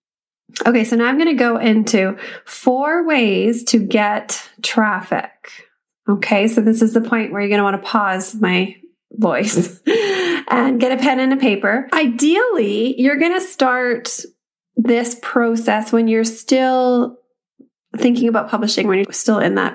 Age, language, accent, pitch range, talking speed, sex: 30-49, English, American, 215-275 Hz, 160 wpm, female